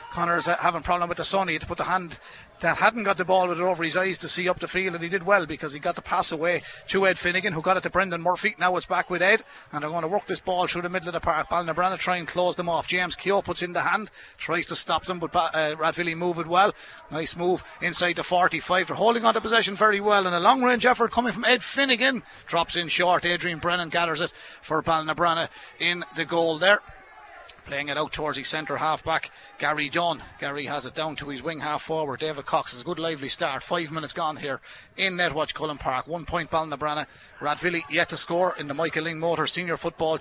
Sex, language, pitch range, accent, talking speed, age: male, English, 160-185 Hz, Irish, 250 wpm, 30-49